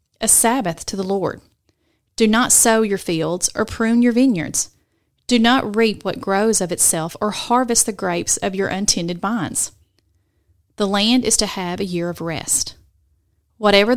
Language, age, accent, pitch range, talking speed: English, 30-49, American, 170-230 Hz, 170 wpm